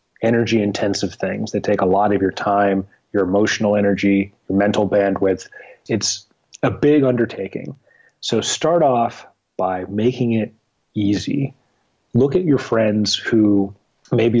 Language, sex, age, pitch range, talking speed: English, male, 30-49, 100-125 Hz, 135 wpm